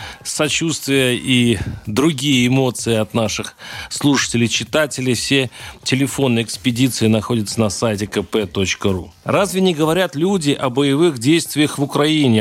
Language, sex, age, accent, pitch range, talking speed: Russian, male, 40-59, native, 110-150 Hz, 110 wpm